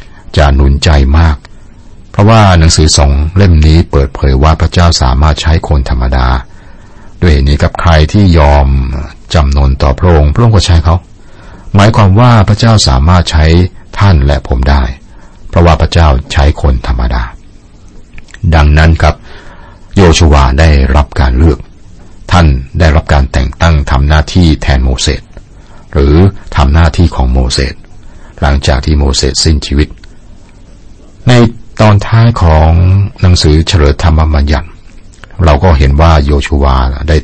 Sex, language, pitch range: male, Thai, 70-95 Hz